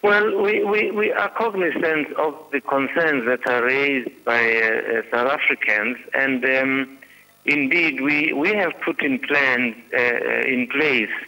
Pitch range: 110-130 Hz